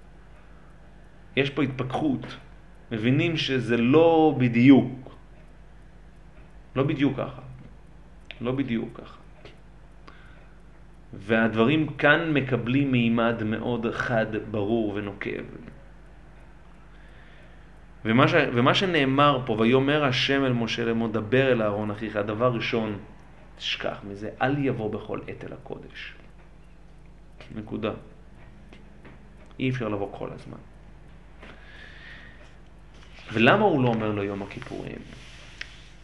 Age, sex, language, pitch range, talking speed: 30-49, male, Hebrew, 105-140 Hz, 95 wpm